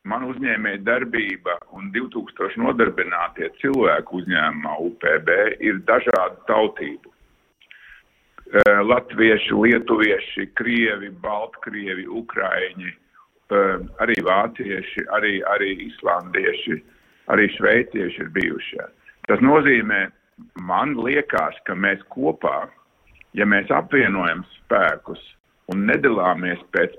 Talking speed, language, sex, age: 90 wpm, Russian, male, 50-69